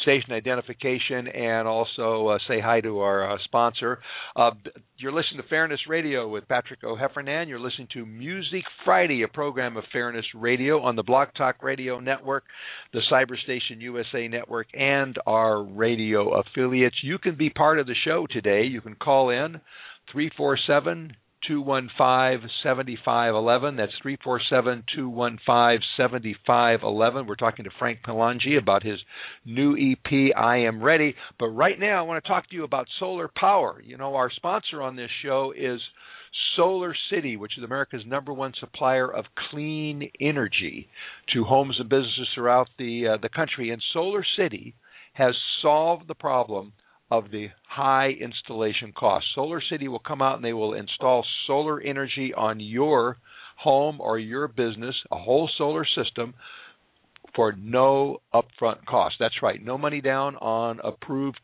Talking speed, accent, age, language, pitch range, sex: 155 wpm, American, 50-69, English, 115-140 Hz, male